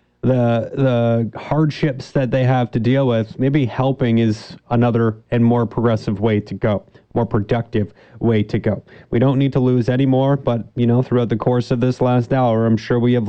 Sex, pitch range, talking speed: male, 120-150 Hz, 200 wpm